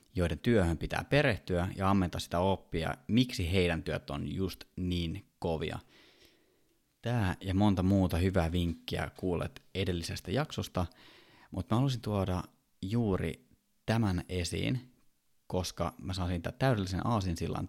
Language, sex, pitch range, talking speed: Finnish, male, 85-110 Hz, 125 wpm